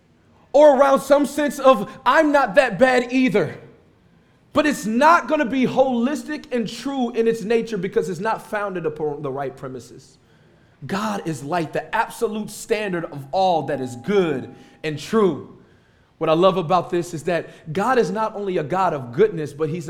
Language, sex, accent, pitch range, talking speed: English, male, American, 185-270 Hz, 180 wpm